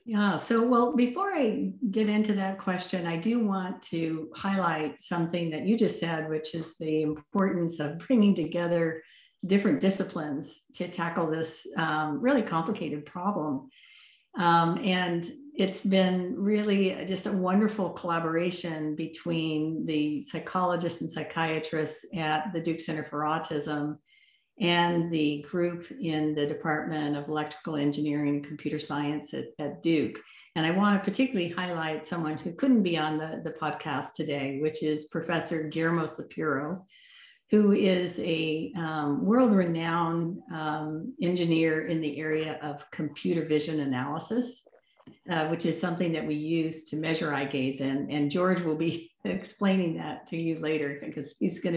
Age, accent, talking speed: 50-69, American, 145 wpm